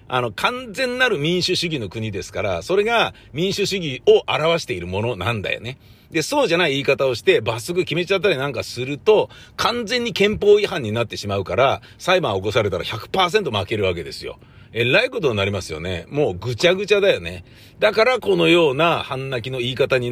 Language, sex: Japanese, male